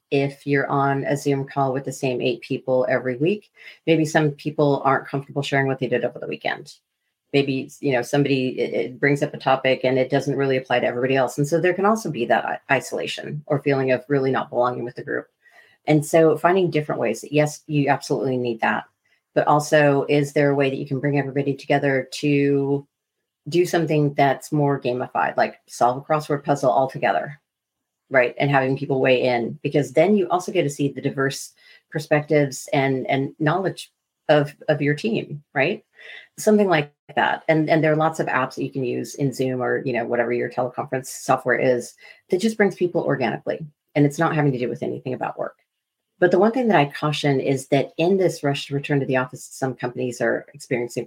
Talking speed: 210 wpm